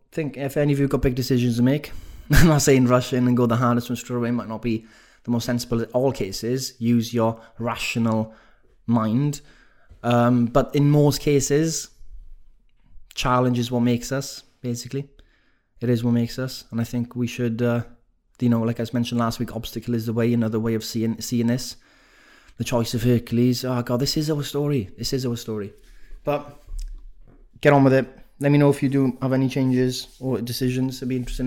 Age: 20-39